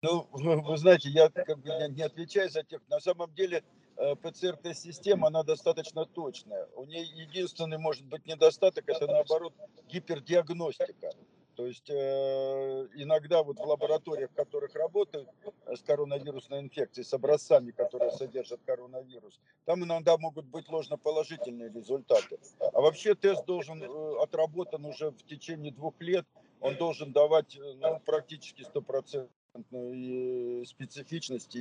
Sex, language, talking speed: male, Russian, 125 wpm